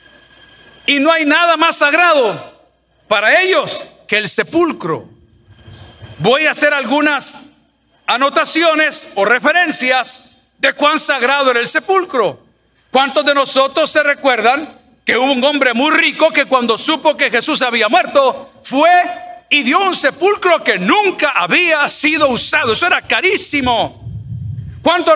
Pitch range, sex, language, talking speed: 265-330 Hz, male, Spanish, 135 wpm